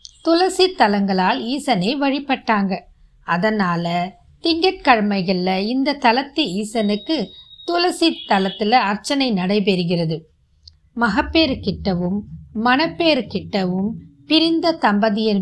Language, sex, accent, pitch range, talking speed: Tamil, female, native, 200-275 Hz, 40 wpm